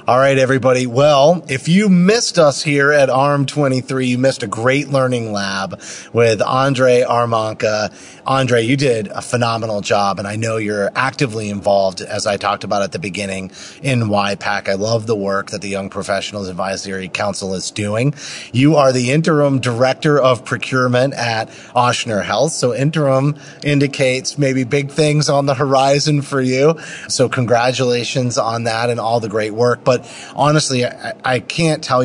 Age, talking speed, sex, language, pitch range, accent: 30-49, 165 wpm, male, English, 105-140 Hz, American